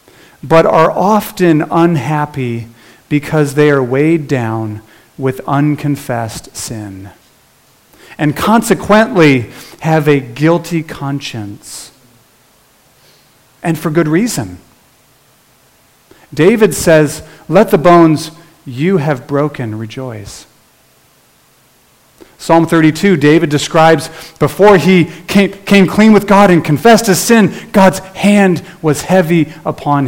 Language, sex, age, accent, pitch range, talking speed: English, male, 40-59, American, 125-165 Hz, 100 wpm